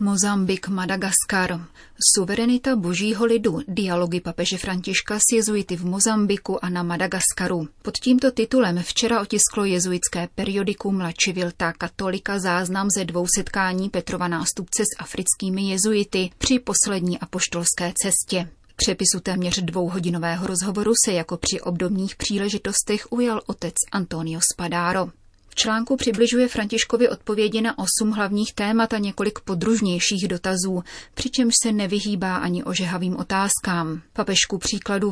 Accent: native